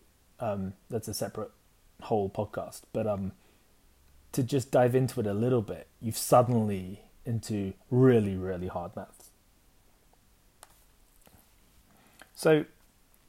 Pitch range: 100-125 Hz